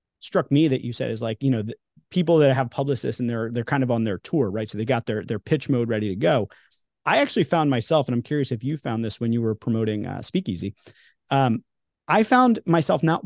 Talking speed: 250 wpm